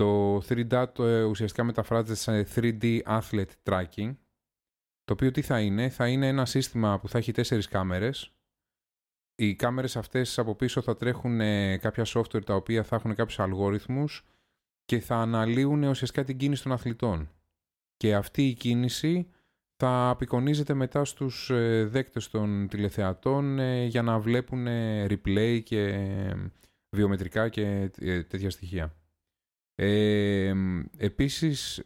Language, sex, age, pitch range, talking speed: Greek, male, 30-49, 95-120 Hz, 125 wpm